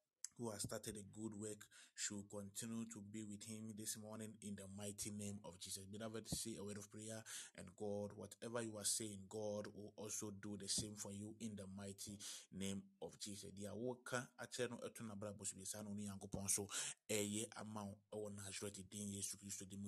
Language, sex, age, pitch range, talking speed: English, male, 20-39, 100-110 Hz, 150 wpm